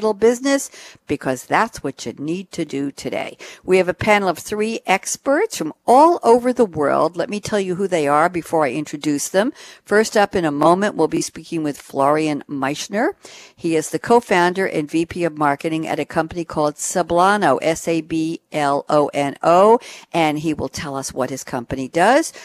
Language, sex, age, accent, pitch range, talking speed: English, female, 60-79, American, 150-195 Hz, 175 wpm